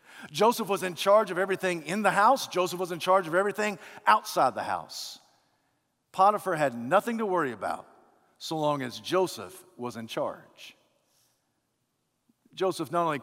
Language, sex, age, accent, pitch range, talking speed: English, male, 50-69, American, 135-180 Hz, 155 wpm